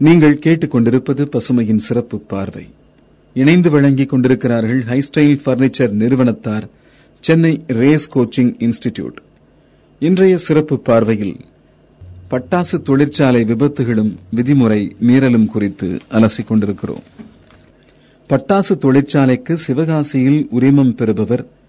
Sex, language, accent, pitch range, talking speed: male, Tamil, native, 115-145 Hz, 85 wpm